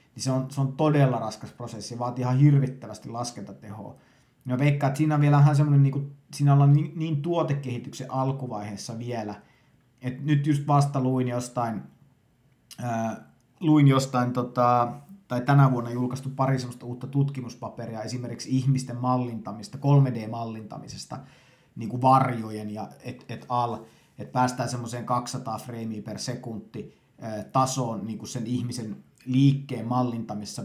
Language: Finnish